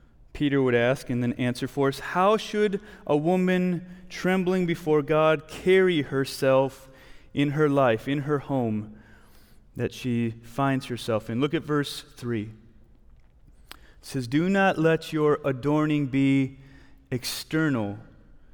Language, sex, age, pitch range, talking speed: English, male, 30-49, 130-165 Hz, 135 wpm